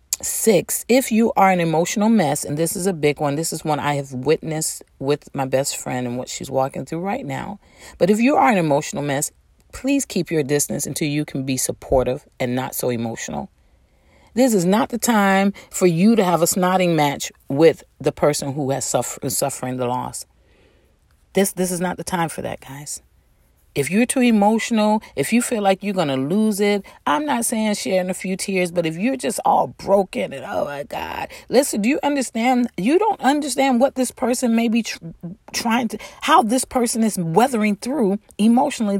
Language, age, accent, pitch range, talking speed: English, 40-59, American, 155-240 Hz, 200 wpm